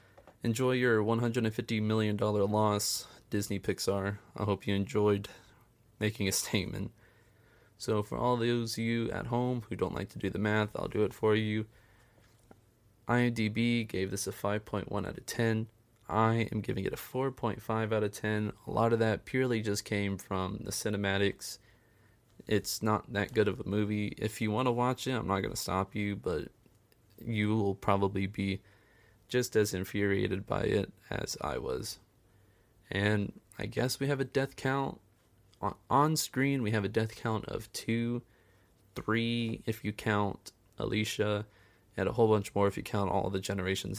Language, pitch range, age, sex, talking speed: English, 100-115 Hz, 20-39, male, 170 wpm